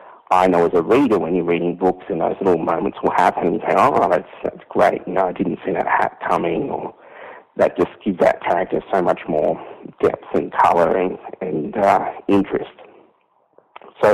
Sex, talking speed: male, 205 wpm